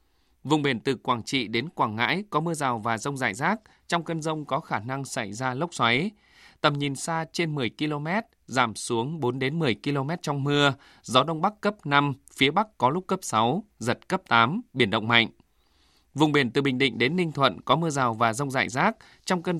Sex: male